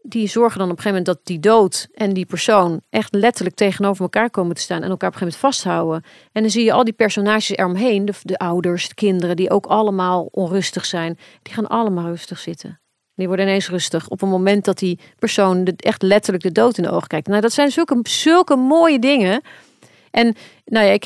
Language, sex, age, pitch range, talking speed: Dutch, female, 40-59, 180-230 Hz, 225 wpm